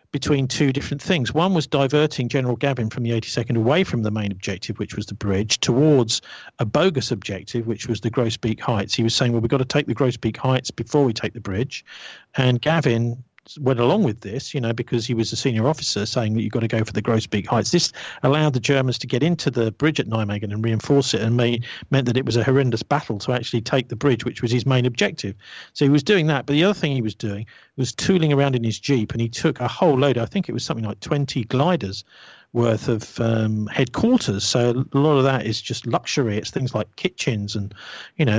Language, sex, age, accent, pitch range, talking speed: English, male, 50-69, British, 115-145 Hz, 240 wpm